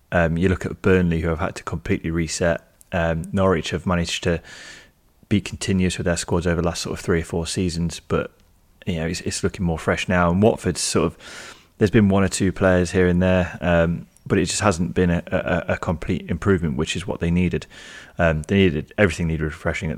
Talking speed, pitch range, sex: 225 wpm, 80-95 Hz, male